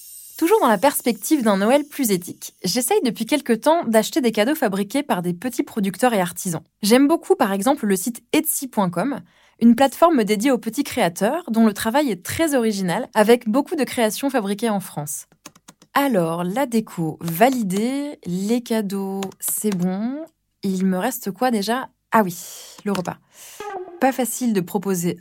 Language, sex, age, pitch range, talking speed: French, female, 20-39, 190-260 Hz, 165 wpm